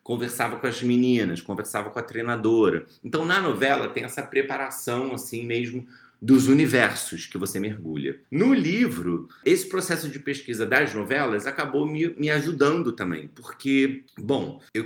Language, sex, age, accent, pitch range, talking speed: Portuguese, male, 30-49, Brazilian, 110-155 Hz, 150 wpm